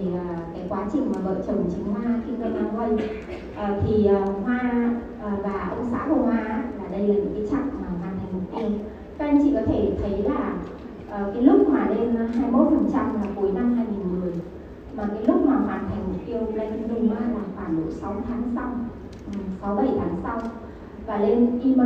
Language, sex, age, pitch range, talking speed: Vietnamese, female, 20-39, 195-250 Hz, 190 wpm